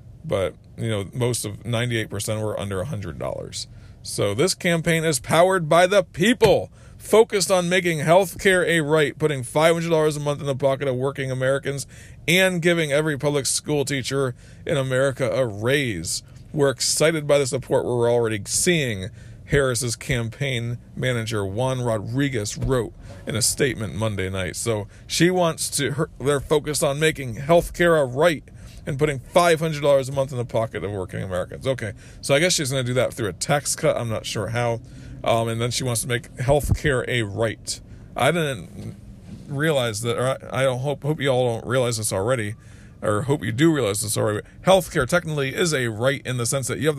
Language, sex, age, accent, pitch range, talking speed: English, male, 40-59, American, 115-150 Hz, 190 wpm